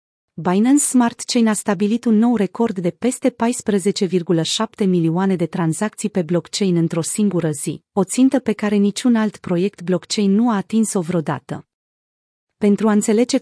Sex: female